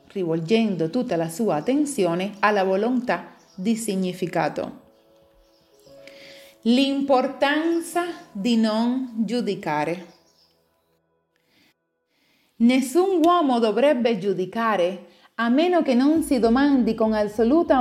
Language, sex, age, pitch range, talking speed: Italian, female, 30-49, 190-260 Hz, 85 wpm